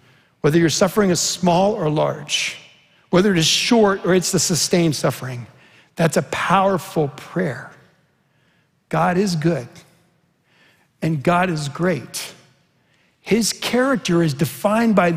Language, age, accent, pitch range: English, 60-79, American, 160-210 Hz